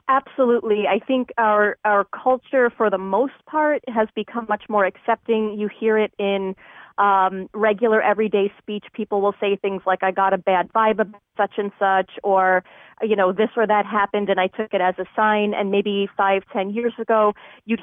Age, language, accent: 30-49, English, American